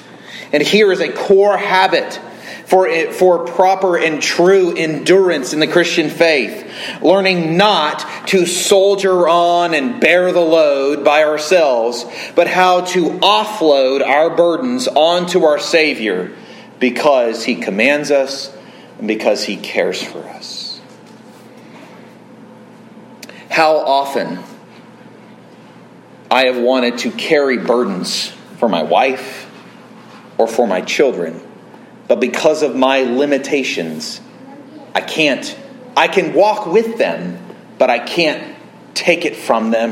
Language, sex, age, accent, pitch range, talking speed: English, male, 40-59, American, 145-225 Hz, 120 wpm